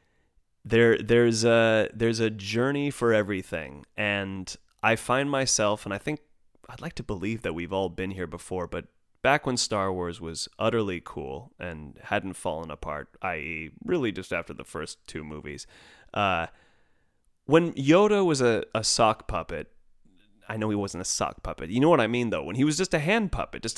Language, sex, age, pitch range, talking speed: English, male, 30-49, 90-120 Hz, 185 wpm